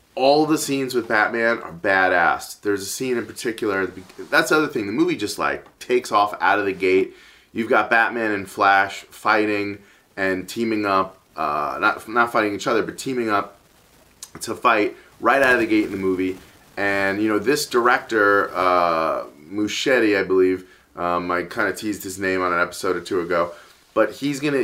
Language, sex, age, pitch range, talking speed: English, male, 30-49, 95-140 Hz, 190 wpm